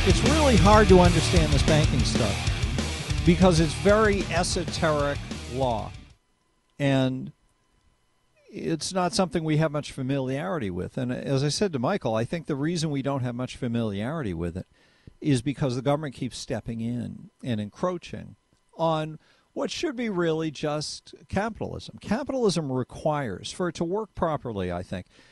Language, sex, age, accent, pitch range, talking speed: English, male, 50-69, American, 130-175 Hz, 150 wpm